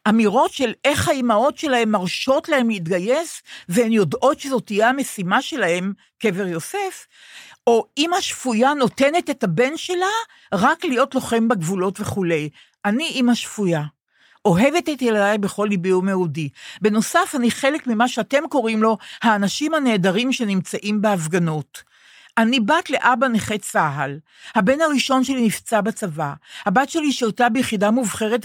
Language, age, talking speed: Hebrew, 50-69, 135 wpm